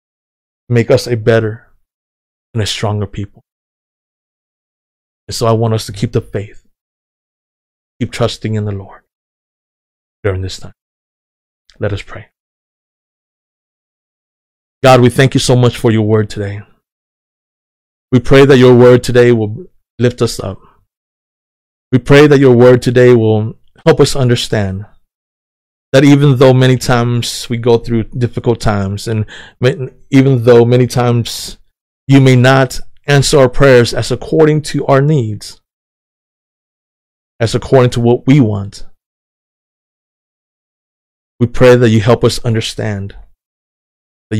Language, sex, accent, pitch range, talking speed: English, male, American, 110-130 Hz, 130 wpm